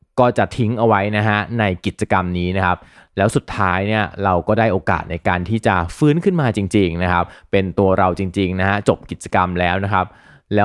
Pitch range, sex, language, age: 95-120 Hz, male, Thai, 20-39